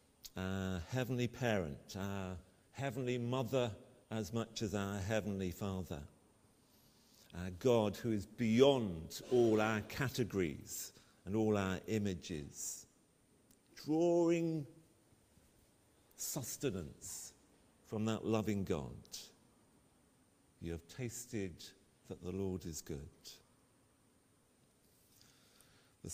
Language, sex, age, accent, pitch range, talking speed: English, male, 50-69, British, 95-120 Hz, 90 wpm